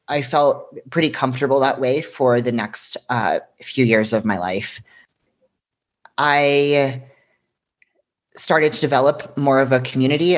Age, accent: 30-49, American